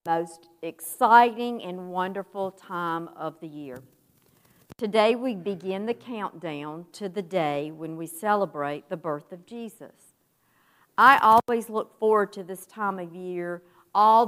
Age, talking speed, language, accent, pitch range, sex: 50-69, 140 wpm, English, American, 175-230 Hz, female